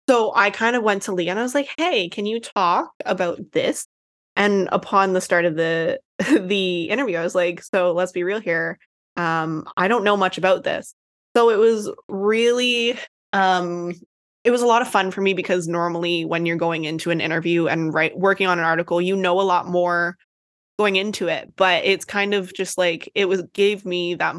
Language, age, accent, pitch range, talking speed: English, 20-39, American, 170-195 Hz, 210 wpm